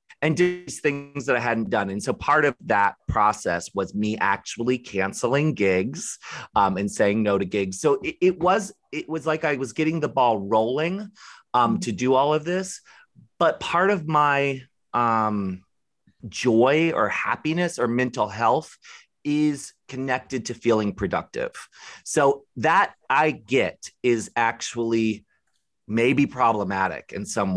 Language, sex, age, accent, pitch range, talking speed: English, male, 30-49, American, 105-155 Hz, 150 wpm